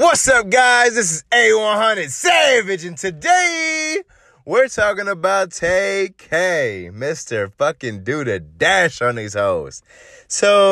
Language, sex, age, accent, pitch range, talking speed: English, male, 20-39, American, 125-195 Hz, 125 wpm